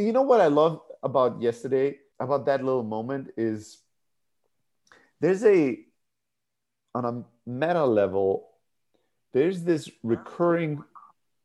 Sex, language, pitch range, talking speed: male, English, 115-150 Hz, 110 wpm